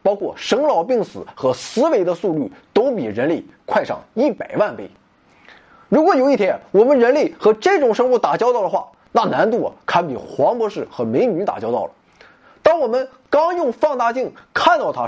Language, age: Chinese, 20-39